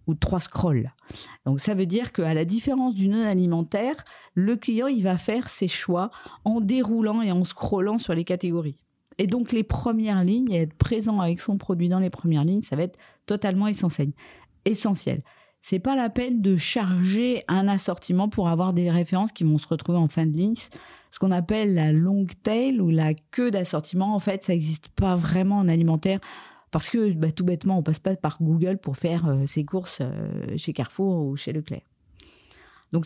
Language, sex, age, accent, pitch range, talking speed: French, female, 40-59, French, 170-220 Hz, 200 wpm